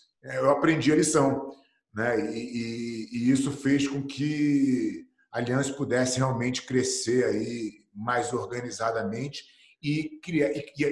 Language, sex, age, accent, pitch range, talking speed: English, male, 40-59, Brazilian, 130-175 Hz, 125 wpm